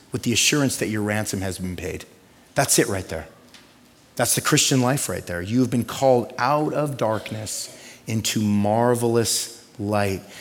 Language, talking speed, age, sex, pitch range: English, 165 wpm, 30-49, male, 125-155 Hz